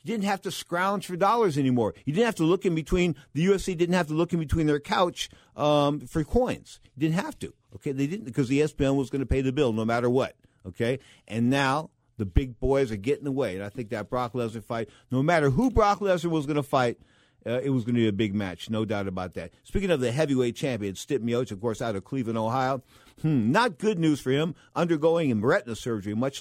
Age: 50-69